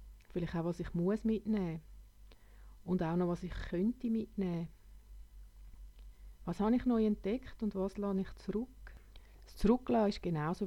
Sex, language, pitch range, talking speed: female, German, 165-210 Hz, 150 wpm